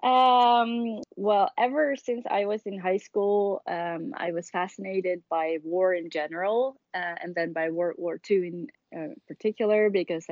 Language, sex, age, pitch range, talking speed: English, female, 20-39, 170-200 Hz, 165 wpm